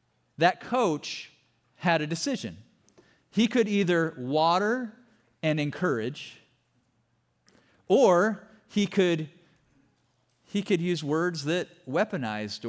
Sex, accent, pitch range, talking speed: male, American, 145-220 Hz, 90 wpm